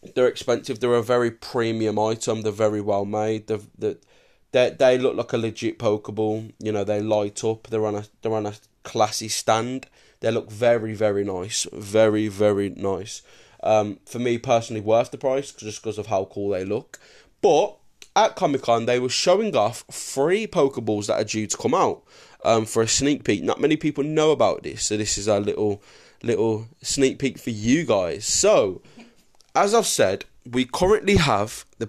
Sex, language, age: male, English, 20-39